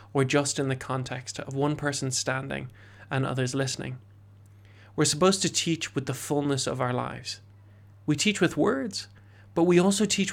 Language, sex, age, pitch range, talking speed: English, male, 30-49, 110-155 Hz, 175 wpm